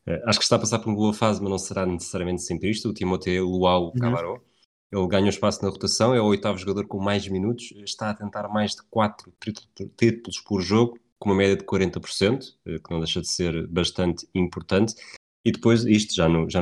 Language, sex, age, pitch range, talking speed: Portuguese, male, 20-39, 90-105 Hz, 215 wpm